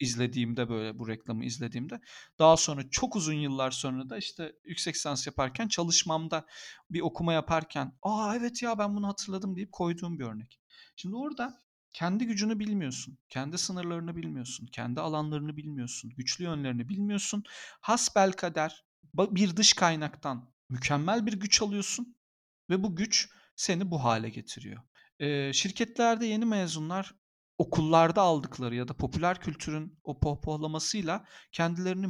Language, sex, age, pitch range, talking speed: Turkish, male, 40-59, 130-190 Hz, 135 wpm